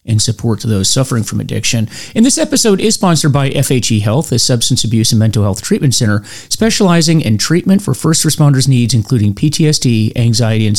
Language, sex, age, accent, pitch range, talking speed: English, male, 40-59, American, 115-155 Hz, 190 wpm